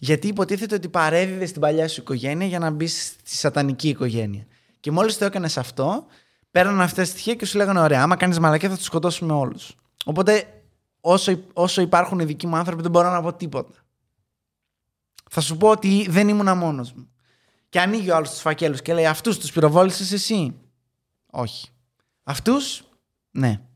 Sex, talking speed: male, 180 wpm